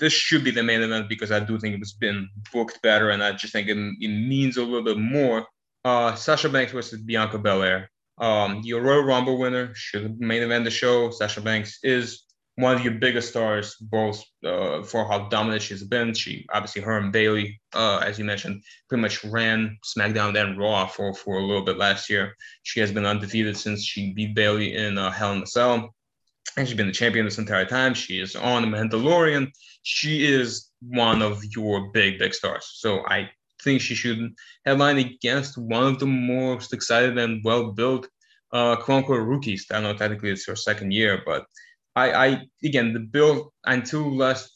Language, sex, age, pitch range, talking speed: English, male, 20-39, 105-125 Hz, 200 wpm